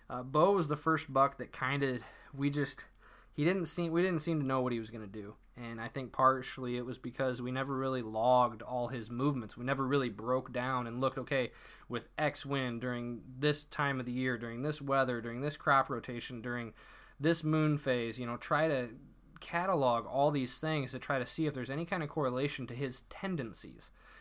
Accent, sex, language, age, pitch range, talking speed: American, male, English, 20-39, 125-145 Hz, 220 wpm